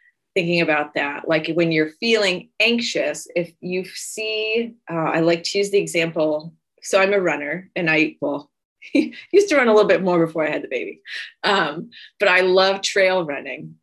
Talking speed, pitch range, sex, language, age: 185 wpm, 165-205 Hz, female, English, 30-49